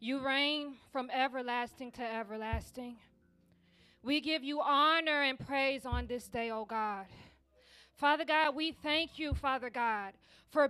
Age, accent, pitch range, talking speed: 20-39, American, 255-335 Hz, 140 wpm